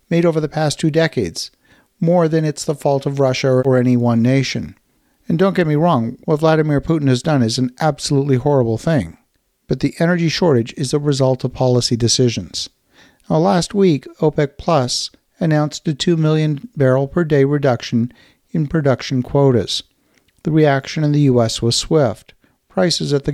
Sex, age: male, 50-69